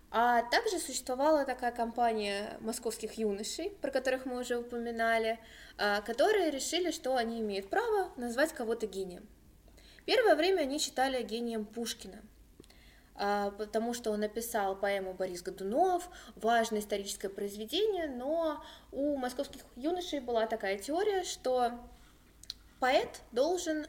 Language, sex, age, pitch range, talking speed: Russian, female, 20-39, 210-285 Hz, 120 wpm